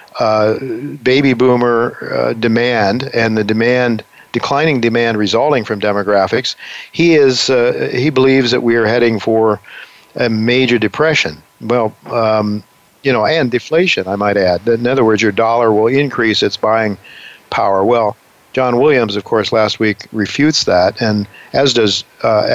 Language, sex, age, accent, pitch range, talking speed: English, male, 50-69, American, 110-125 Hz, 155 wpm